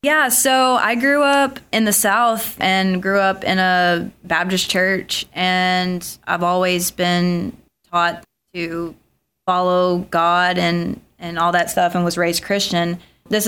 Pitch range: 175-200 Hz